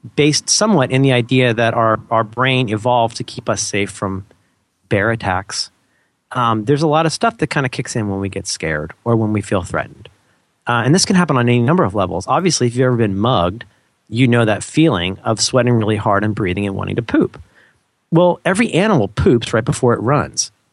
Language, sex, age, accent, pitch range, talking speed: English, male, 40-59, American, 110-150 Hz, 215 wpm